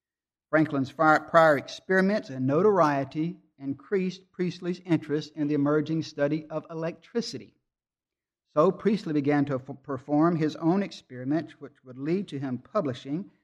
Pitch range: 145-180 Hz